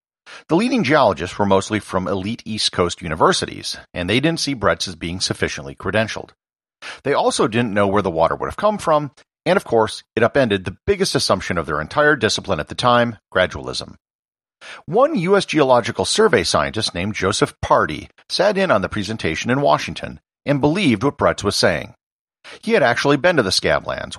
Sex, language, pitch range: male, English, 95-140 Hz